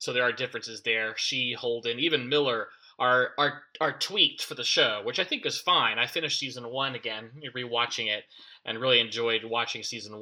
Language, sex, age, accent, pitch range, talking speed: English, male, 20-39, American, 125-155 Hz, 195 wpm